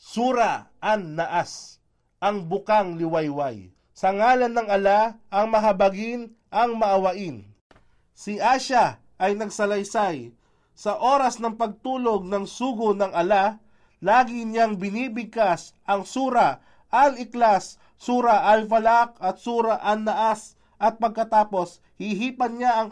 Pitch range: 180-230 Hz